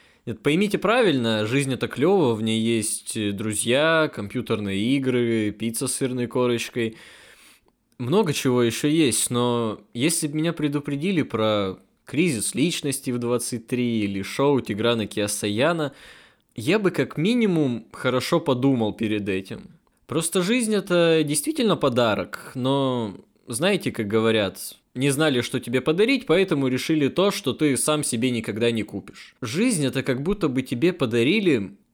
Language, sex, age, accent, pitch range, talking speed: Russian, male, 20-39, native, 110-145 Hz, 135 wpm